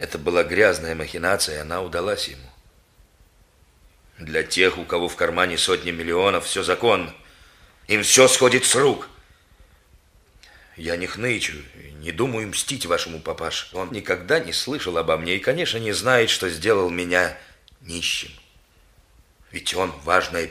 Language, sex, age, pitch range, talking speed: Russian, male, 40-59, 85-130 Hz, 140 wpm